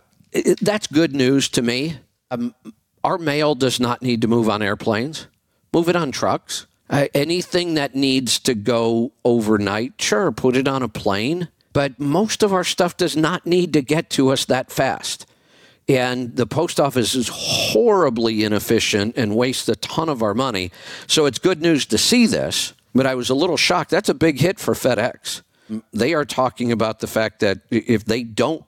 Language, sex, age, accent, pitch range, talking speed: English, male, 50-69, American, 110-145 Hz, 185 wpm